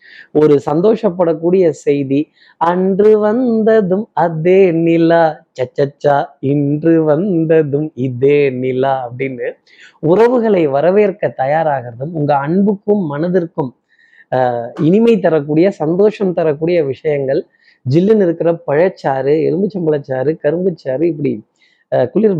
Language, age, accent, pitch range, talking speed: Tamil, 30-49, native, 145-185 Hz, 90 wpm